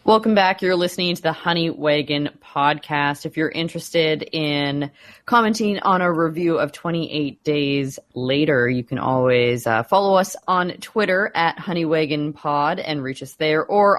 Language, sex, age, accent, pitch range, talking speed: English, female, 20-39, American, 145-190 Hz, 165 wpm